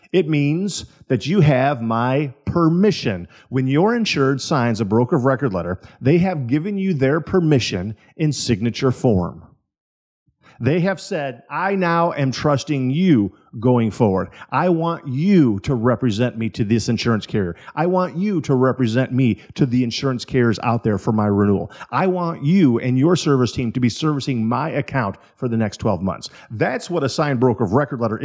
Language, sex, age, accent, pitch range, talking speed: English, male, 50-69, American, 120-170 Hz, 180 wpm